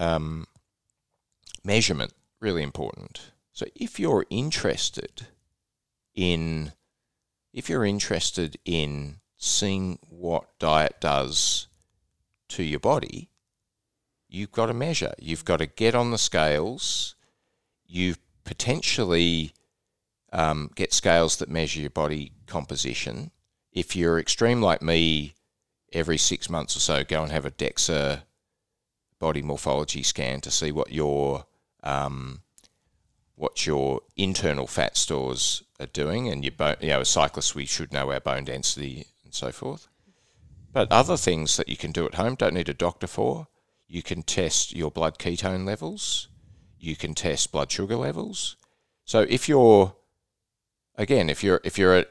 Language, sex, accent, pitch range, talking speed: English, male, Australian, 75-95 Hz, 140 wpm